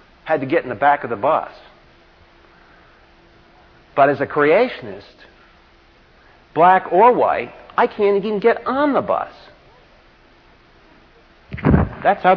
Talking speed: 120 wpm